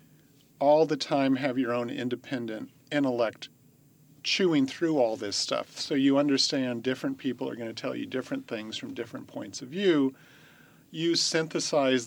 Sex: male